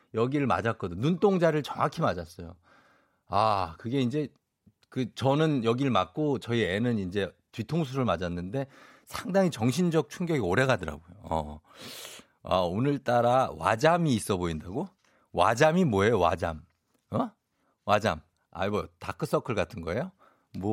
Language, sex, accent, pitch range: Korean, male, native, 95-140 Hz